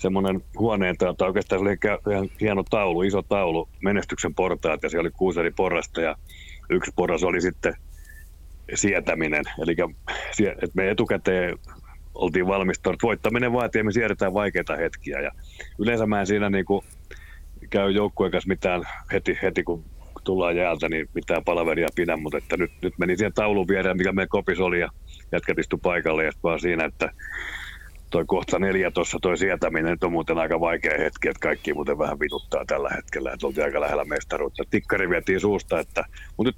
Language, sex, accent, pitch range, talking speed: Finnish, male, native, 80-100 Hz, 170 wpm